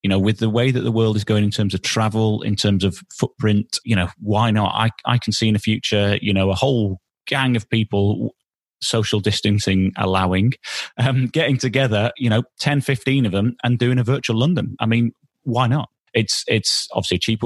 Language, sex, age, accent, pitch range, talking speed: English, male, 30-49, British, 100-125 Hz, 215 wpm